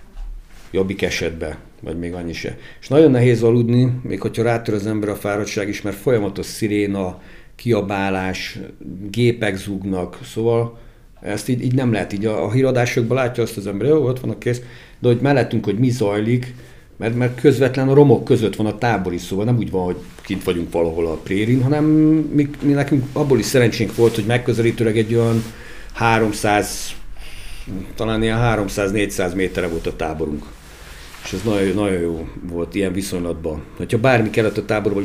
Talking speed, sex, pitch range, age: 175 wpm, male, 95-120 Hz, 60-79